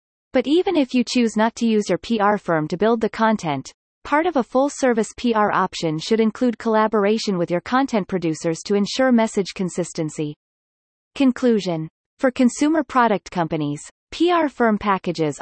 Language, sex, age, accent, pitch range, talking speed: English, female, 30-49, American, 180-245 Hz, 155 wpm